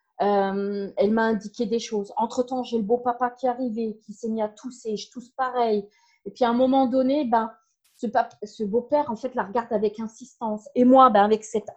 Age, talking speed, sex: 30-49, 225 wpm, female